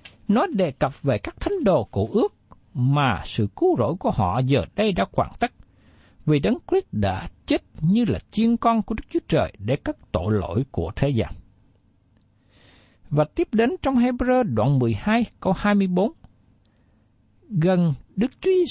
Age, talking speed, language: 60-79, 170 wpm, Vietnamese